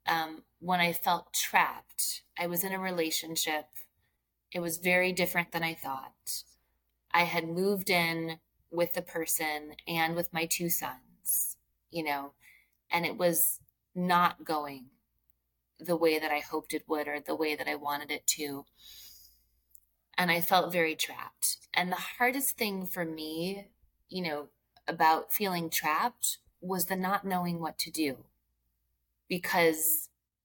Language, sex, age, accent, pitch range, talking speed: English, female, 30-49, American, 140-180 Hz, 150 wpm